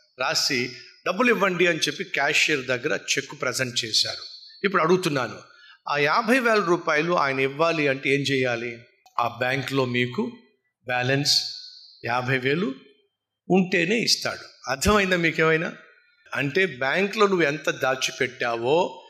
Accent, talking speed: native, 70 wpm